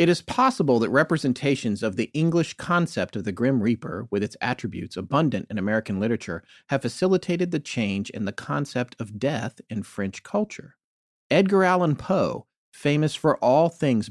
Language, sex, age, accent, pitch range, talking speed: English, male, 40-59, American, 110-160 Hz, 165 wpm